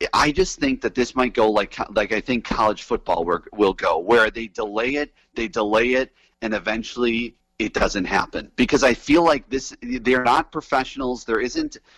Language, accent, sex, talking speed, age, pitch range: English, American, male, 190 wpm, 30-49, 110-160 Hz